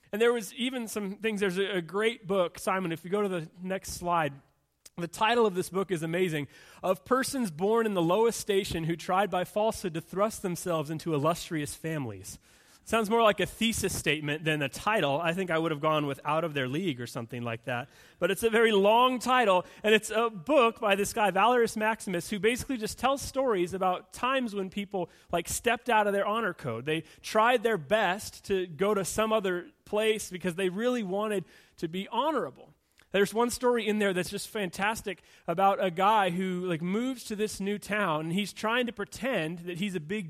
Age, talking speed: 30-49, 210 wpm